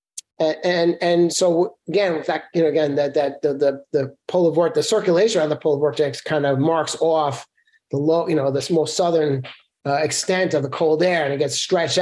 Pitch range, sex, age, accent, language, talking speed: 140-170 Hz, male, 30-49, American, English, 215 wpm